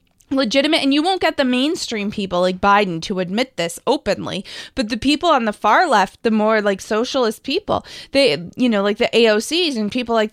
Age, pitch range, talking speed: 20-39, 190-250 Hz, 205 wpm